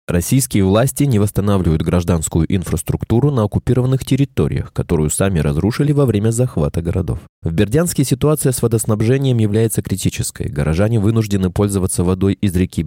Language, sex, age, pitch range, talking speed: Russian, male, 20-39, 90-125 Hz, 135 wpm